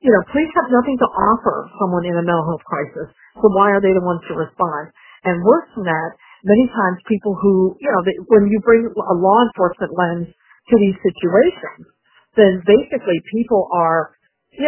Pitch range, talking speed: 185-220 Hz, 190 wpm